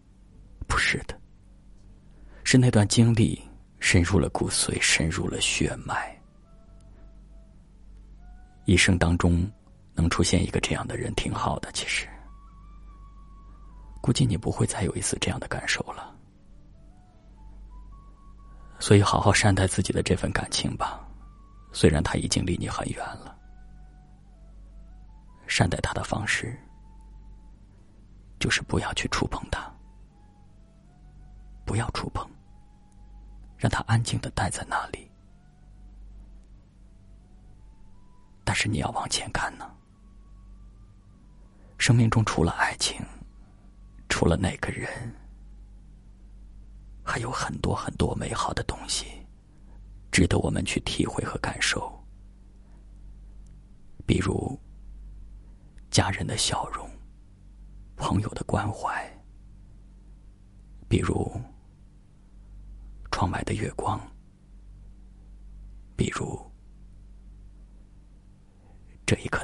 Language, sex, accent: Chinese, male, native